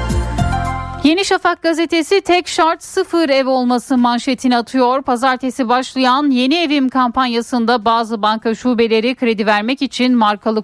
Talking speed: 125 wpm